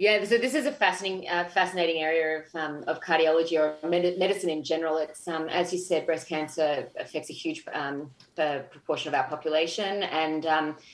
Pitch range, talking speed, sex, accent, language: 155-180 Hz, 190 wpm, female, Australian, English